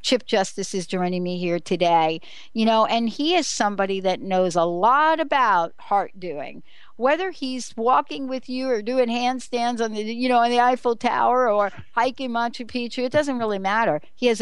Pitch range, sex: 185-245 Hz, female